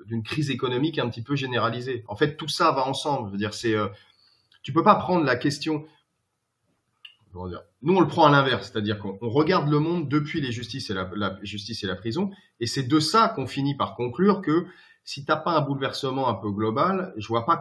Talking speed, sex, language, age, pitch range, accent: 230 wpm, male, French, 30-49, 100-135 Hz, French